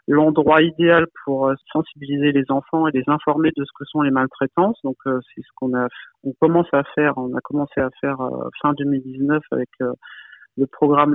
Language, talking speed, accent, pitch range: French, 200 wpm, French, 140-160 Hz